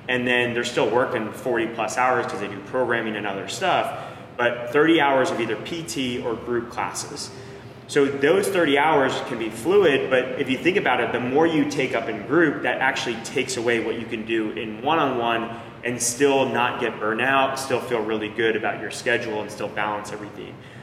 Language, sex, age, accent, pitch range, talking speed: English, male, 20-39, American, 110-130 Hz, 210 wpm